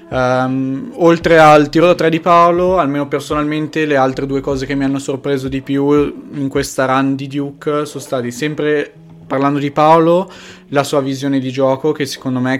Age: 20-39